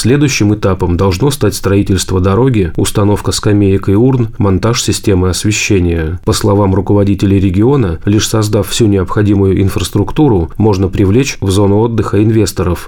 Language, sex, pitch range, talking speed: Russian, male, 95-110 Hz, 130 wpm